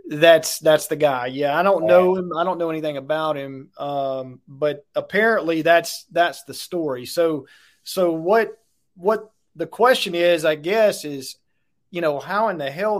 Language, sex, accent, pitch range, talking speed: English, male, American, 140-170 Hz, 175 wpm